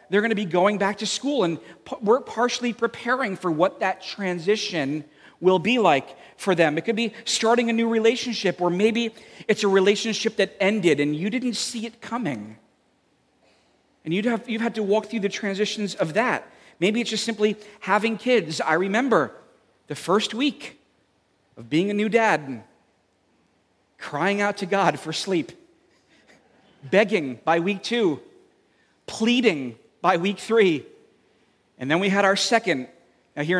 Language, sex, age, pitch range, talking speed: English, male, 40-59, 170-225 Hz, 160 wpm